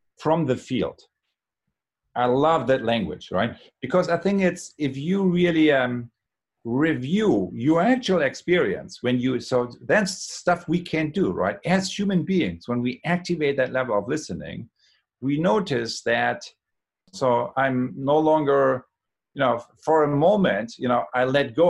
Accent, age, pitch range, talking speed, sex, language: German, 50-69, 120-160 Hz, 155 wpm, male, English